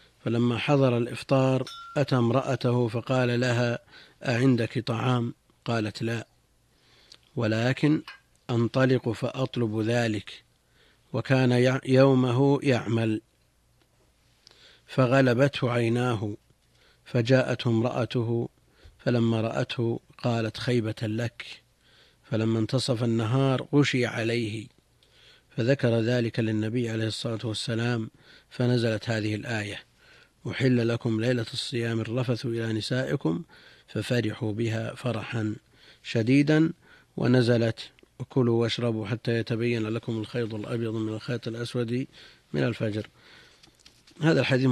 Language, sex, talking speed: Arabic, male, 90 wpm